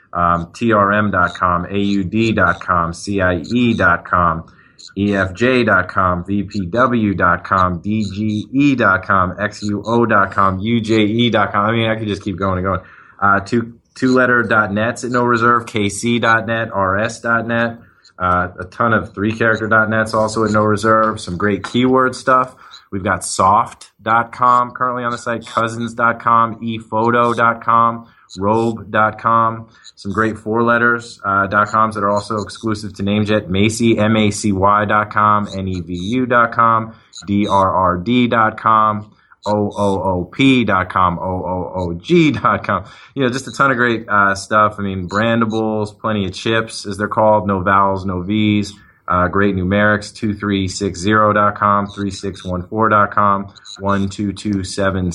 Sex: male